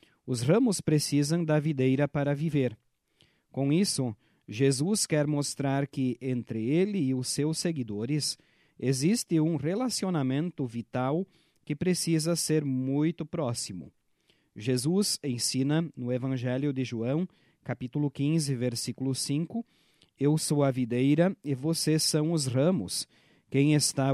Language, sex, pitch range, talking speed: Portuguese, male, 125-160 Hz, 120 wpm